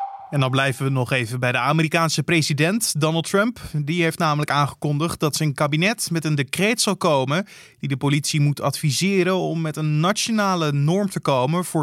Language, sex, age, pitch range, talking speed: Dutch, male, 20-39, 125-170 Hz, 190 wpm